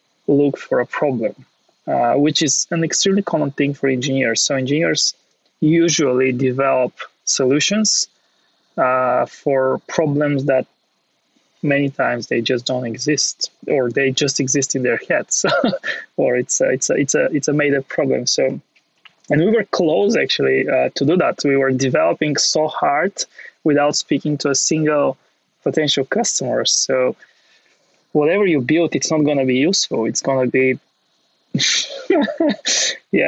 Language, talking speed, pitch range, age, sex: English, 145 wpm, 130-155 Hz, 20-39, male